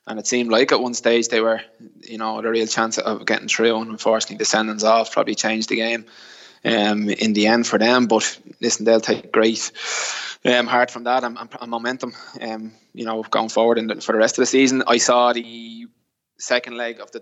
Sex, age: male, 20-39